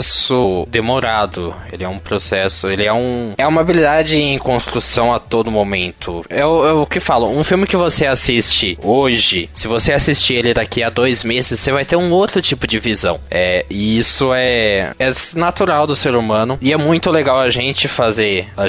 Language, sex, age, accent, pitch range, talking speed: Portuguese, male, 20-39, Brazilian, 115-150 Hz, 190 wpm